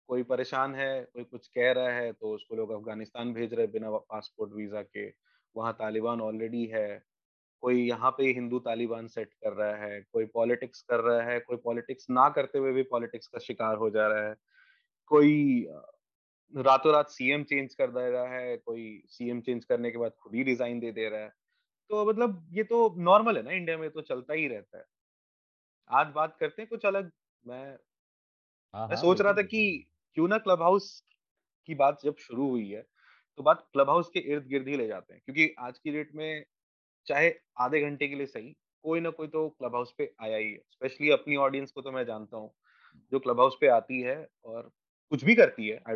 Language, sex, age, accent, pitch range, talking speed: Hindi, male, 20-39, native, 115-155 Hz, 210 wpm